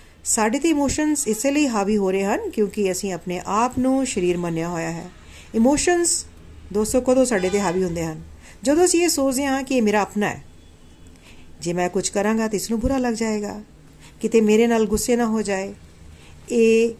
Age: 40-59